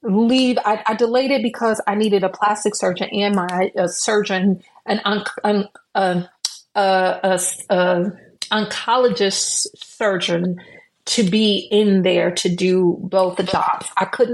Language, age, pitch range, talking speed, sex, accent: English, 30-49, 190-230 Hz, 145 wpm, female, American